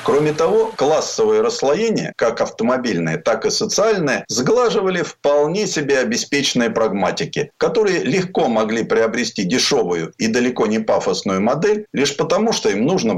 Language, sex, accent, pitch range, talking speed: Russian, male, native, 140-220 Hz, 130 wpm